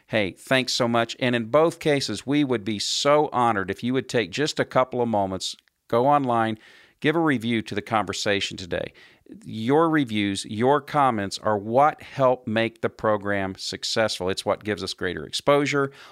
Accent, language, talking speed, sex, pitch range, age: American, English, 180 wpm, male, 100-130 Hz, 50-69